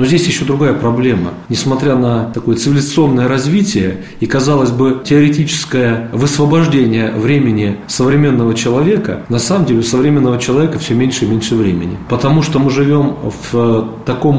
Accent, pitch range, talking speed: native, 110-135 Hz, 145 wpm